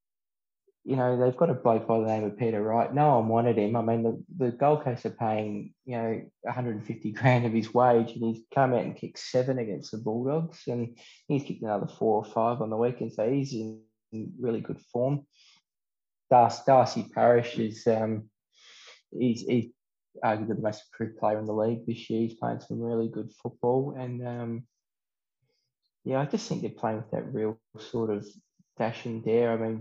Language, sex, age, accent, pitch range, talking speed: English, male, 20-39, Australian, 110-125 Hz, 195 wpm